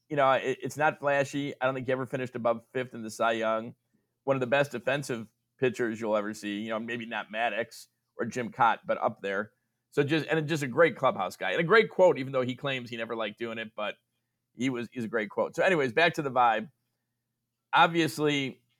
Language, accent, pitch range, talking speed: English, American, 115-140 Hz, 230 wpm